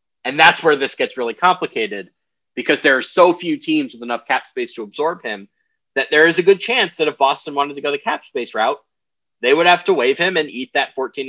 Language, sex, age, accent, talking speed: English, male, 30-49, American, 245 wpm